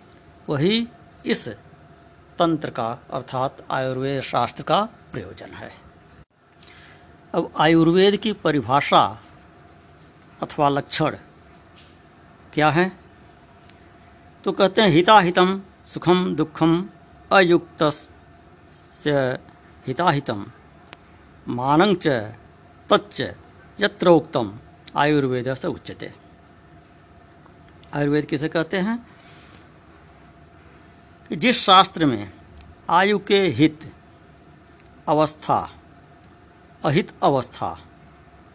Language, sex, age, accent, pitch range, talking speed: Hindi, female, 60-79, native, 115-180 Hz, 70 wpm